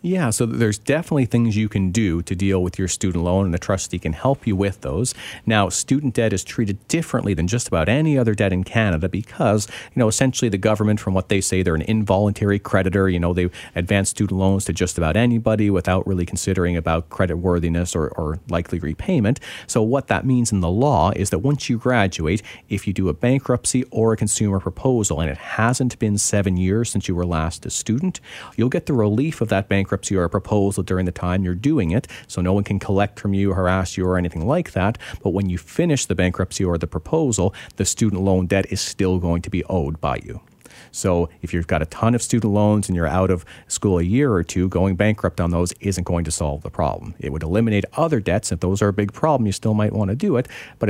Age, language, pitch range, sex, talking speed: 40-59, English, 90-110 Hz, male, 235 wpm